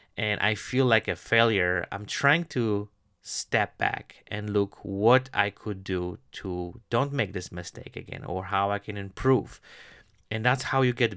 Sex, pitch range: male, 95-120 Hz